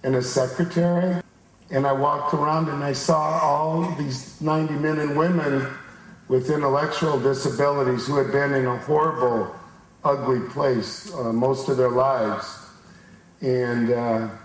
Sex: male